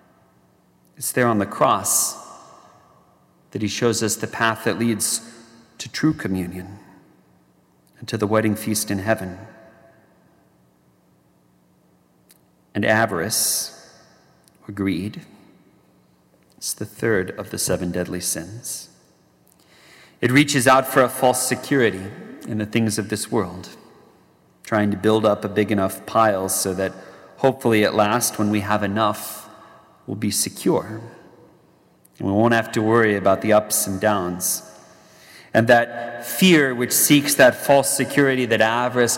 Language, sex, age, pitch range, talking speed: English, male, 40-59, 95-120 Hz, 135 wpm